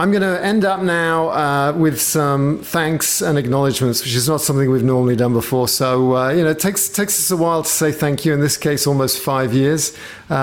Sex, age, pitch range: male, 50-69, 125-150 Hz